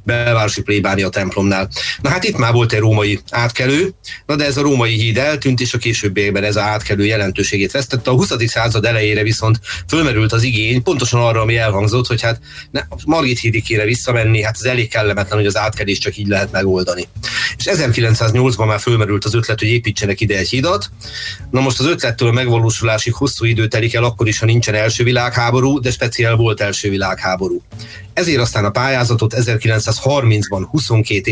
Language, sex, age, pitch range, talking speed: Hungarian, male, 30-49, 105-120 Hz, 180 wpm